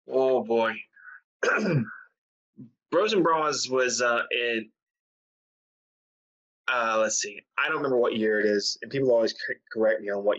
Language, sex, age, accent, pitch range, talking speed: English, male, 20-39, American, 110-125 Hz, 140 wpm